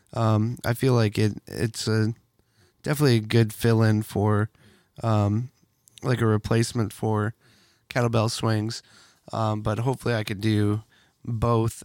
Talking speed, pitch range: 135 wpm, 110-125 Hz